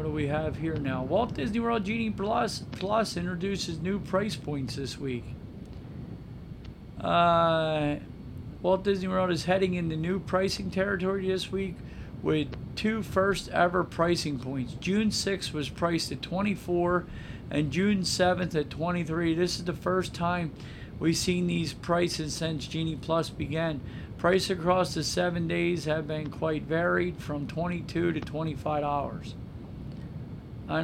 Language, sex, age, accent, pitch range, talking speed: English, male, 50-69, American, 150-180 Hz, 145 wpm